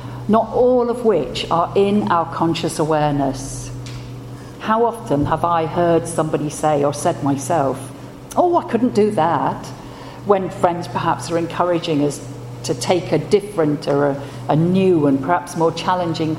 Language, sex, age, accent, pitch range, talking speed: English, female, 50-69, British, 140-190 Hz, 155 wpm